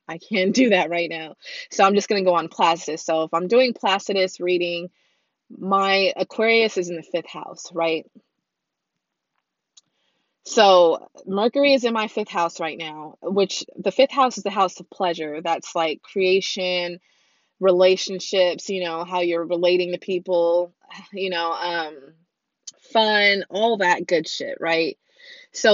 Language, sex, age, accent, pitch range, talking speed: English, female, 20-39, American, 175-220 Hz, 155 wpm